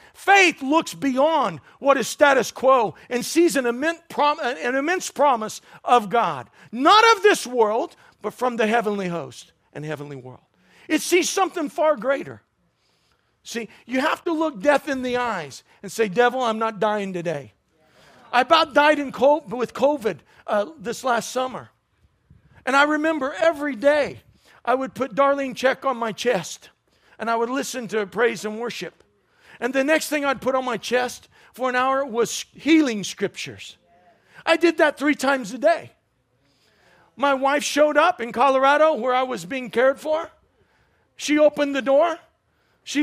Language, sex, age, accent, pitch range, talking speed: English, male, 50-69, American, 230-300 Hz, 165 wpm